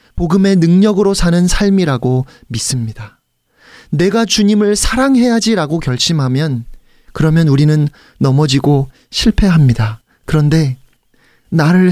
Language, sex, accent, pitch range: Korean, male, native, 145-220 Hz